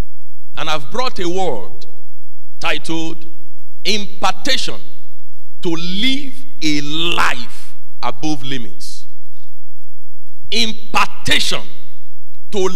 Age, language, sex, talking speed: 50-69, English, male, 70 wpm